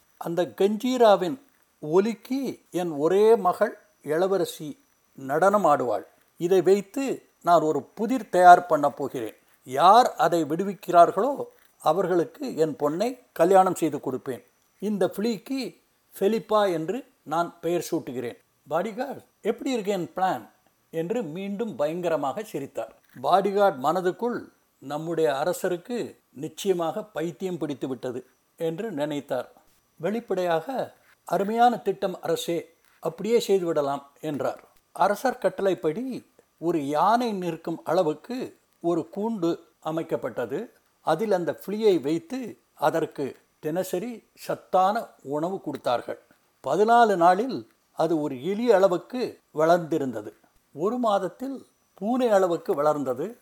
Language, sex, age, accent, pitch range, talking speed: Tamil, male, 60-79, native, 160-215 Hz, 100 wpm